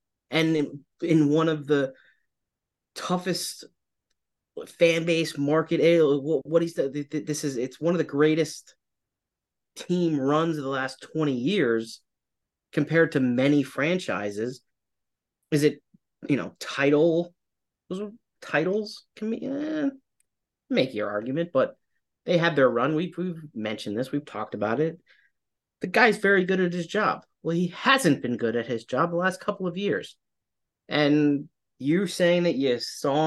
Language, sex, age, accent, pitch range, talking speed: English, male, 30-49, American, 135-170 Hz, 150 wpm